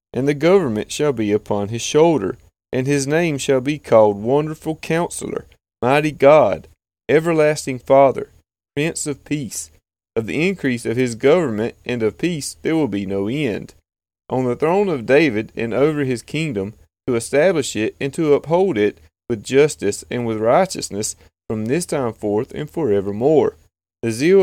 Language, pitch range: English, 100-150 Hz